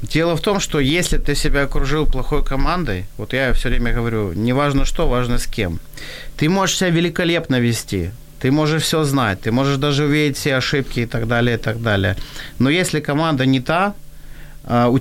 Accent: native